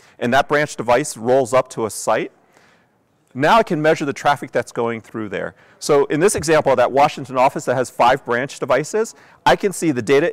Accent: American